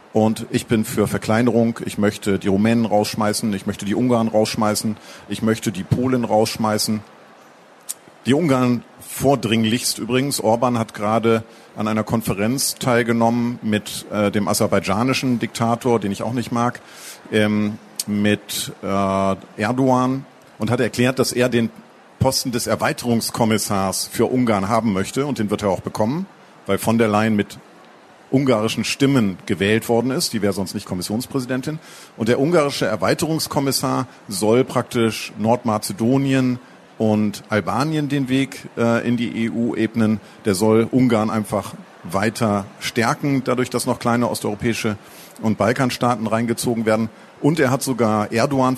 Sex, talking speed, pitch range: male, 140 wpm, 105-120 Hz